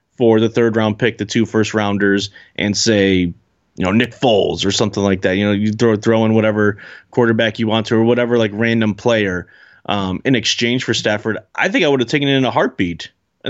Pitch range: 110-140 Hz